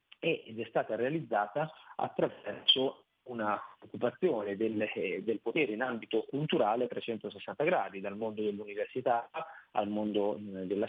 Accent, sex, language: native, male, Italian